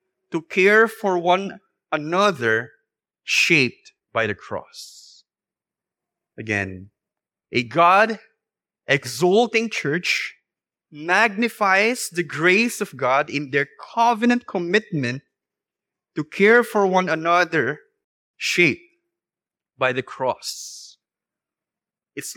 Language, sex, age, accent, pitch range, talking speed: English, male, 20-39, Filipino, 160-220 Hz, 90 wpm